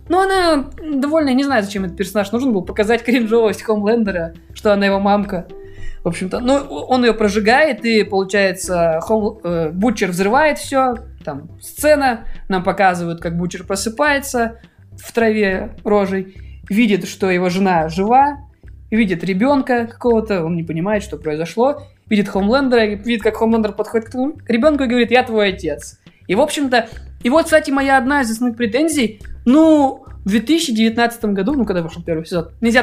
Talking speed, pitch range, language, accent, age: 160 wpm, 195-250 Hz, Russian, native, 20-39